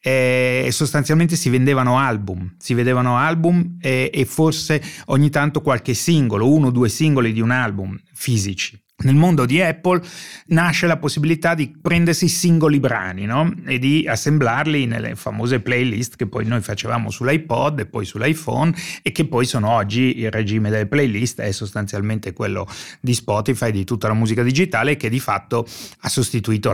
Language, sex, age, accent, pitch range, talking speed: Italian, male, 30-49, native, 105-130 Hz, 160 wpm